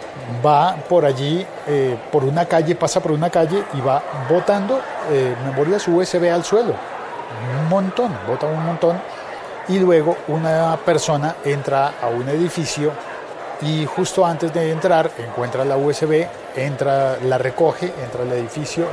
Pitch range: 135-175 Hz